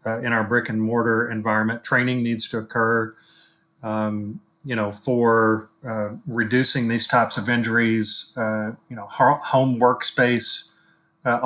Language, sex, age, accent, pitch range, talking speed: English, male, 40-59, American, 110-125 Hz, 140 wpm